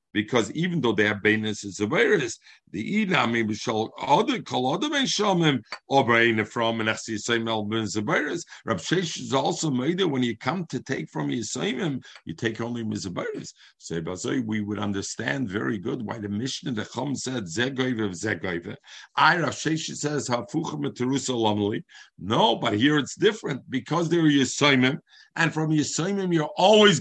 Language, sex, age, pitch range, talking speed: English, male, 50-69, 110-150 Hz, 160 wpm